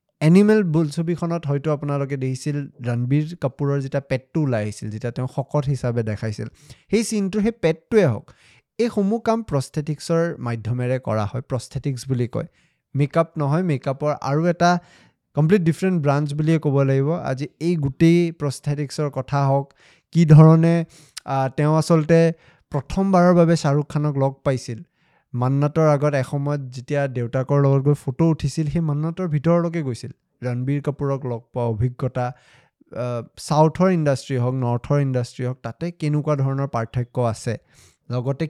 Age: 20-39